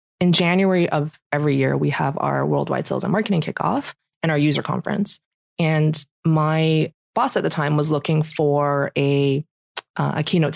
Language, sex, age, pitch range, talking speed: English, female, 20-39, 150-170 Hz, 170 wpm